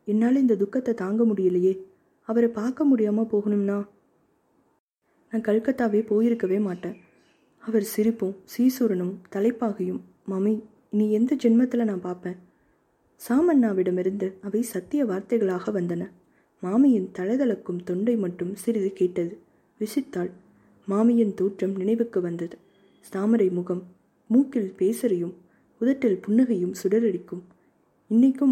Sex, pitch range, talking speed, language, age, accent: female, 185-230 Hz, 95 wpm, Tamil, 20-39, native